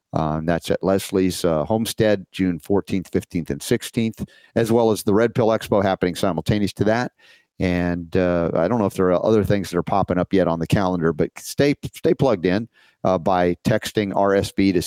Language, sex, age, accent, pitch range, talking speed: English, male, 50-69, American, 85-110 Hz, 200 wpm